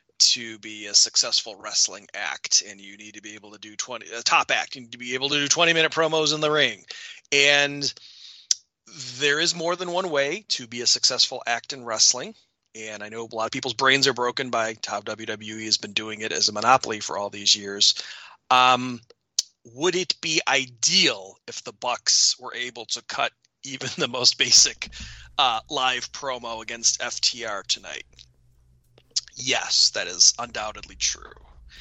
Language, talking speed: English, 185 wpm